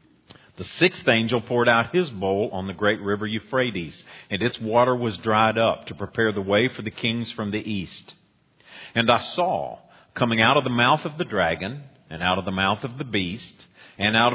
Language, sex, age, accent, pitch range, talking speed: English, male, 50-69, American, 95-125 Hz, 205 wpm